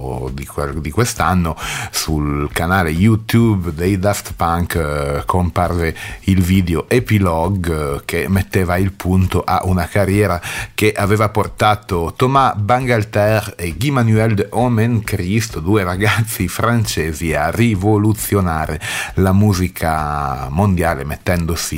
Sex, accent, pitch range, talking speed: male, native, 85-105 Hz, 110 wpm